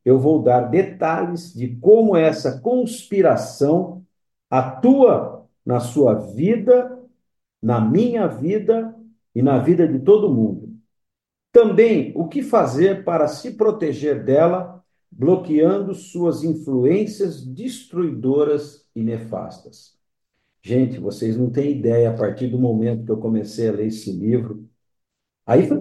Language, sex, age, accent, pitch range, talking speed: Portuguese, male, 50-69, Brazilian, 120-175 Hz, 125 wpm